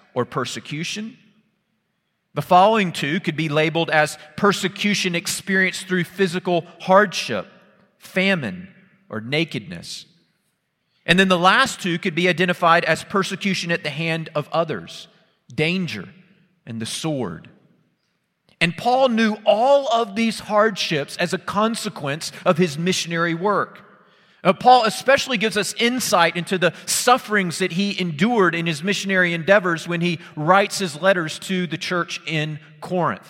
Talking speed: 135 wpm